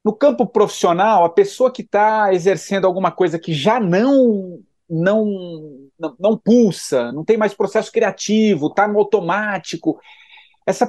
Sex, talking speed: male, 140 wpm